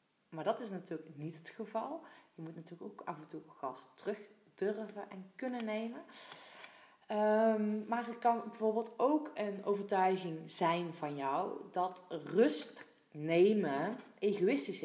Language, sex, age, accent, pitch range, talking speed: Dutch, female, 30-49, Dutch, 160-220 Hz, 135 wpm